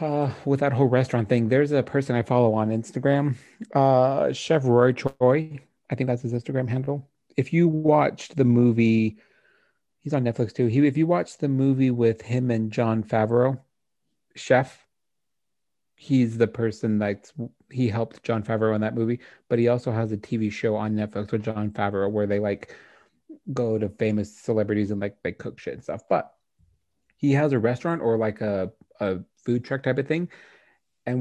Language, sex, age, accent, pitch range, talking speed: English, male, 30-49, American, 110-130 Hz, 185 wpm